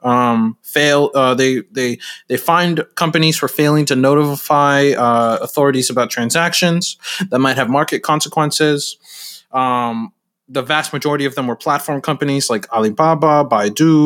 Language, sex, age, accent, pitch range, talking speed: English, male, 20-39, American, 115-150 Hz, 140 wpm